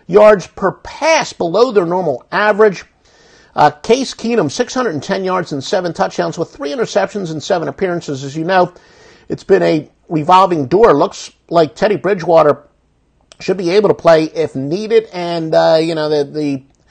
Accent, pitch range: American, 135-190 Hz